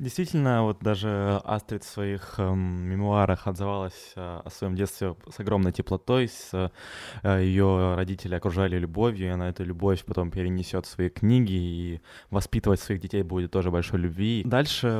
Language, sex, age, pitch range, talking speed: Ukrainian, male, 20-39, 90-105 Hz, 160 wpm